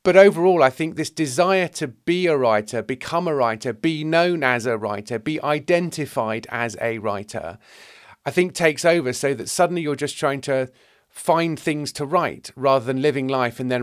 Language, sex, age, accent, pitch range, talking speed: English, male, 40-59, British, 120-155 Hz, 190 wpm